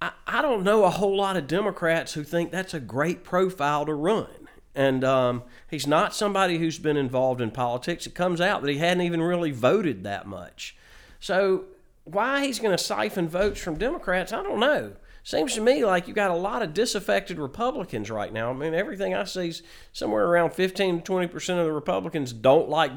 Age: 40-59